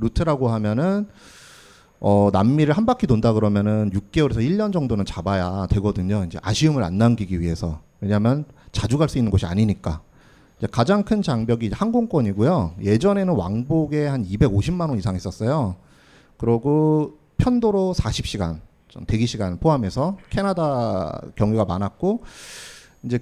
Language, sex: Korean, male